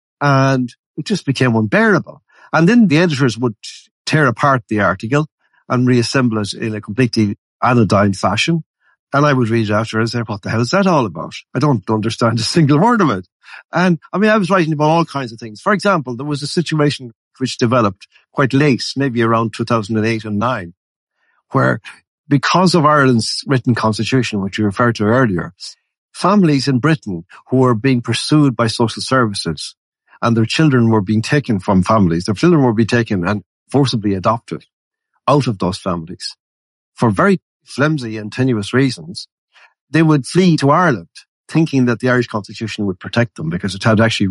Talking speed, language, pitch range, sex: 185 wpm, English, 105-145 Hz, male